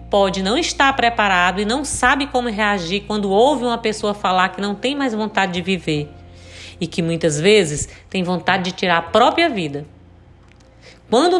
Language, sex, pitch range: Portuguese, female, 185-245 Hz